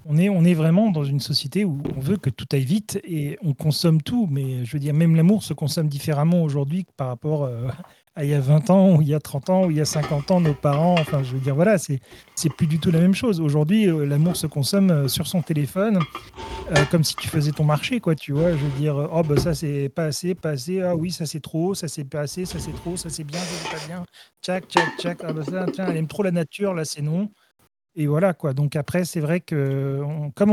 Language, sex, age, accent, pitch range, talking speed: French, male, 40-59, French, 145-180 Hz, 270 wpm